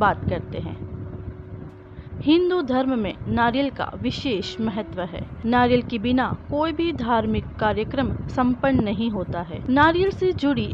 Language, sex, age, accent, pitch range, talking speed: Hindi, female, 30-49, native, 220-310 Hz, 140 wpm